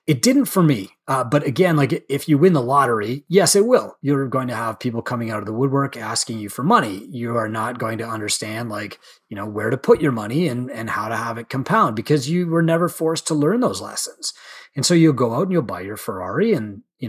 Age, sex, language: 30-49, male, English